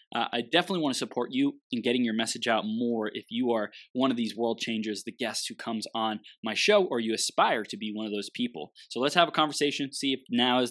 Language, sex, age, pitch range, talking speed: English, male, 20-39, 110-150 Hz, 260 wpm